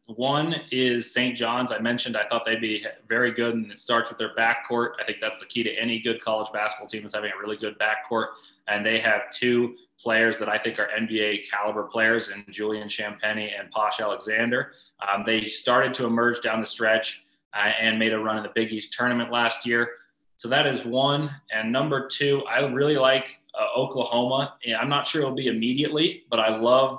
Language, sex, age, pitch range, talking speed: English, male, 20-39, 110-125 Hz, 210 wpm